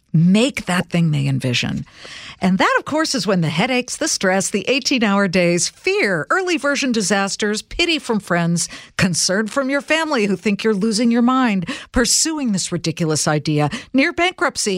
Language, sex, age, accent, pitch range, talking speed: English, female, 50-69, American, 165-225 Hz, 165 wpm